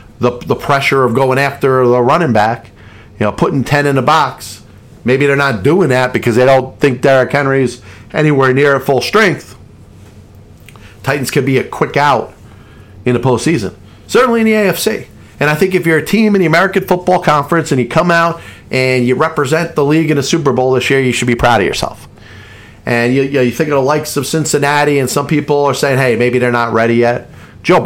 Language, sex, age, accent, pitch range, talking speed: English, male, 40-59, American, 110-140 Hz, 215 wpm